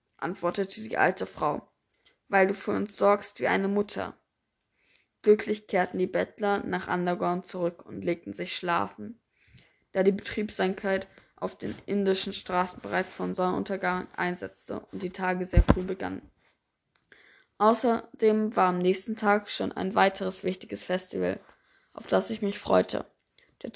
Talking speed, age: 140 wpm, 20-39